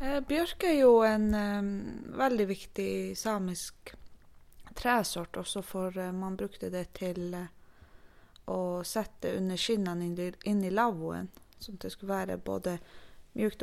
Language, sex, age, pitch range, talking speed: English, female, 20-39, 165-205 Hz, 135 wpm